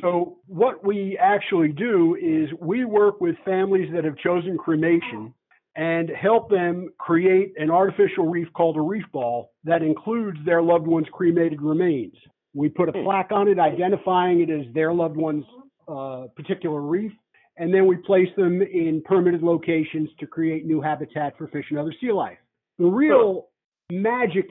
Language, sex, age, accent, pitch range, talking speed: English, male, 50-69, American, 160-190 Hz, 165 wpm